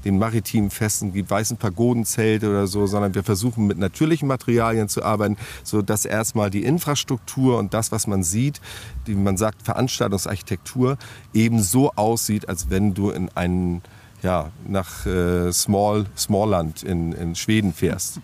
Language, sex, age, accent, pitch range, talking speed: German, male, 40-59, German, 100-125 Hz, 155 wpm